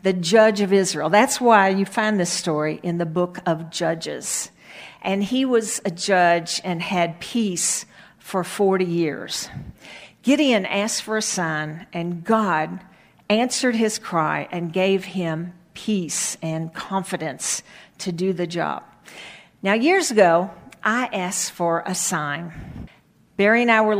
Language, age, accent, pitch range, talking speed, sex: English, 50-69, American, 170-210 Hz, 145 wpm, female